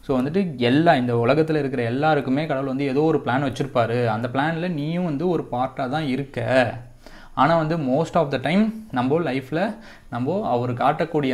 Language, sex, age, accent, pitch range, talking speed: Tamil, male, 20-39, native, 125-155 Hz, 170 wpm